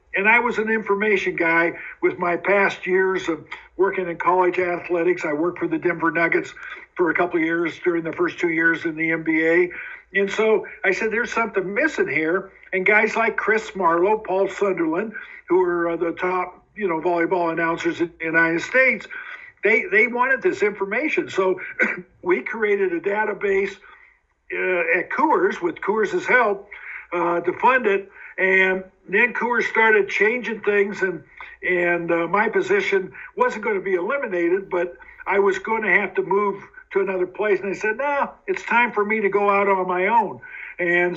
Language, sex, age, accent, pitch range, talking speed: English, male, 60-79, American, 175-235 Hz, 180 wpm